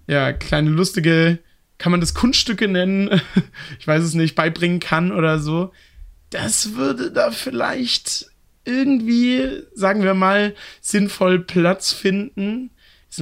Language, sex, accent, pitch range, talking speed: German, male, German, 150-185 Hz, 125 wpm